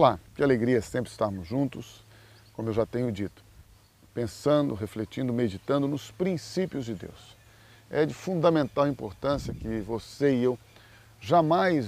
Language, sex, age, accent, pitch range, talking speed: Portuguese, male, 40-59, Brazilian, 110-140 Hz, 135 wpm